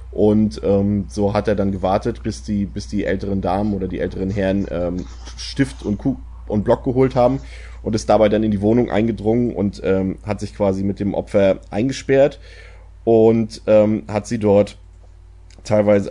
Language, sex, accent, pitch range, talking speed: German, male, German, 95-115 Hz, 180 wpm